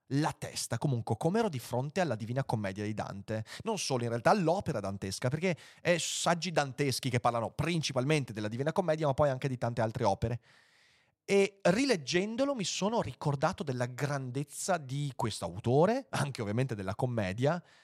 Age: 30-49